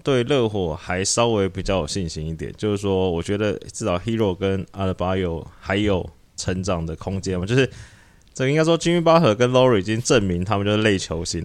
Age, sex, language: 20-39, male, Chinese